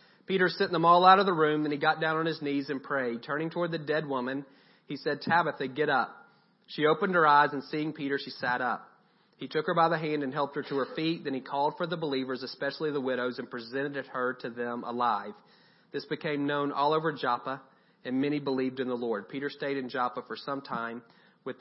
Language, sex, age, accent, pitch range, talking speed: English, male, 40-59, American, 140-160 Hz, 235 wpm